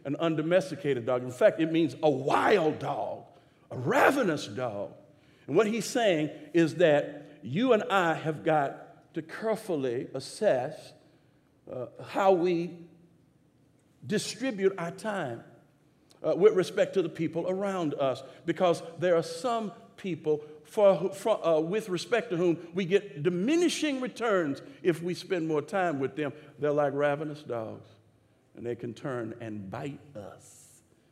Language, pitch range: English, 150-190 Hz